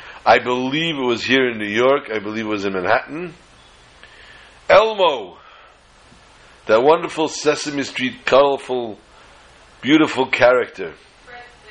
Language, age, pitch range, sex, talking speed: English, 60-79, 120-160 Hz, male, 115 wpm